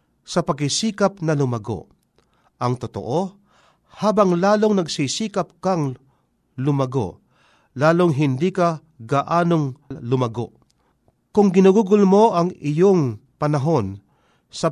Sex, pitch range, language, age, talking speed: male, 130-180 Hz, Filipino, 50-69, 95 wpm